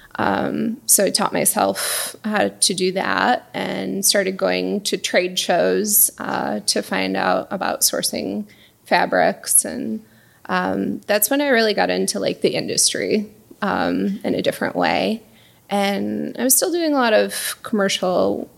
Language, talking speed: English, 150 wpm